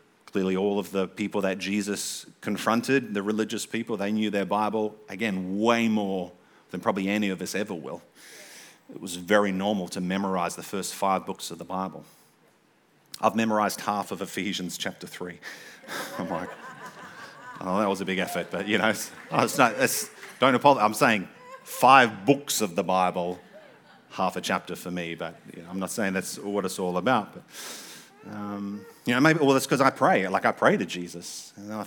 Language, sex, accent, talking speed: English, male, Australian, 180 wpm